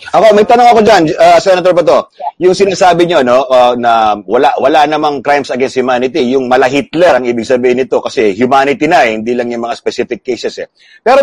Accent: native